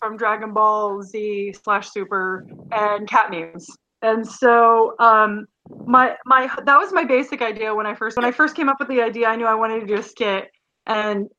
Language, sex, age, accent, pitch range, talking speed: English, female, 20-39, American, 205-255 Hz, 205 wpm